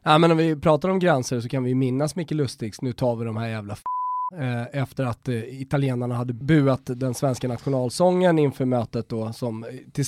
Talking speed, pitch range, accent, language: 210 wpm, 125-165 Hz, native, Swedish